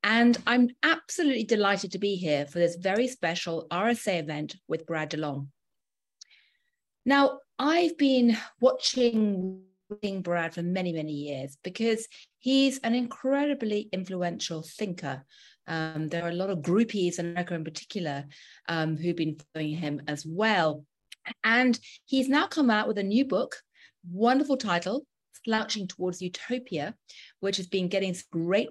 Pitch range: 170-240 Hz